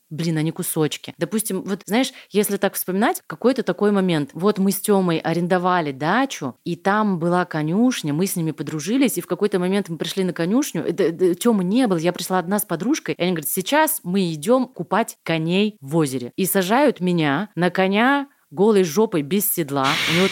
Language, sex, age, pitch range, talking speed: Russian, female, 30-49, 175-225 Hz, 185 wpm